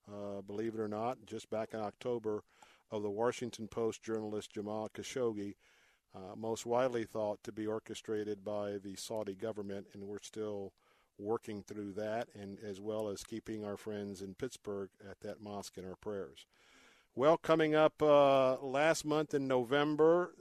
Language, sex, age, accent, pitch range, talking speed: English, male, 50-69, American, 105-130 Hz, 165 wpm